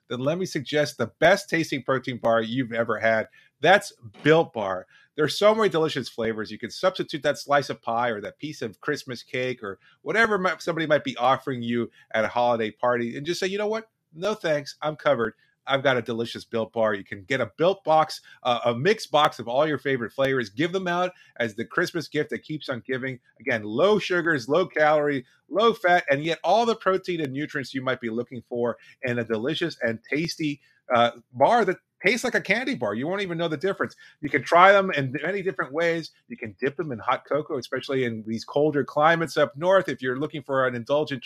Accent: American